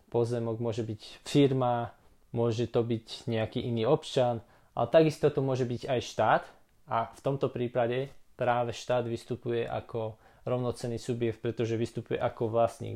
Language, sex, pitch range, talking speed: Slovak, male, 110-125 Hz, 145 wpm